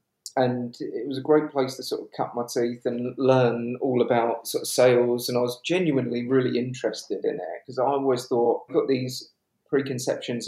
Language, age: English, 40-59